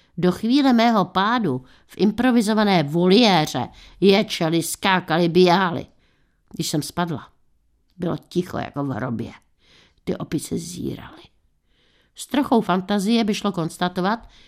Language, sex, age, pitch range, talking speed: Czech, female, 60-79, 155-200 Hz, 110 wpm